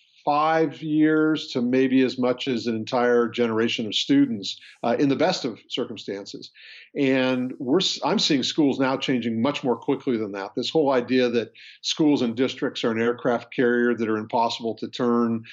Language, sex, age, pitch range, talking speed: English, male, 50-69, 120-140 Hz, 175 wpm